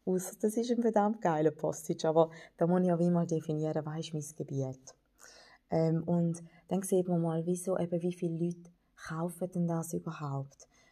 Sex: female